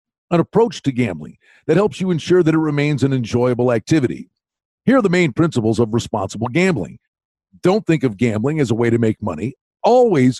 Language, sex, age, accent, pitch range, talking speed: English, male, 50-69, American, 120-180 Hz, 190 wpm